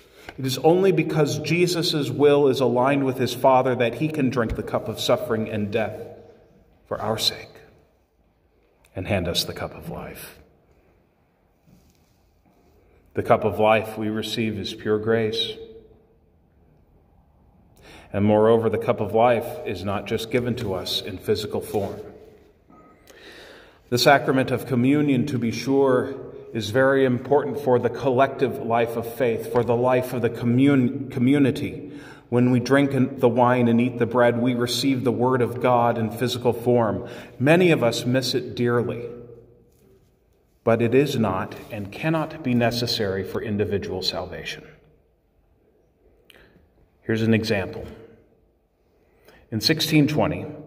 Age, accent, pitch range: 40-59, American, 110-135 Hz